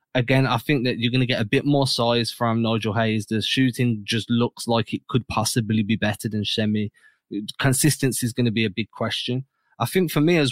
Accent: British